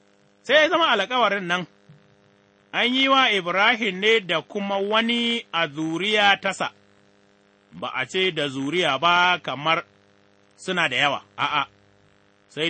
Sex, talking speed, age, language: male, 115 wpm, 30-49, English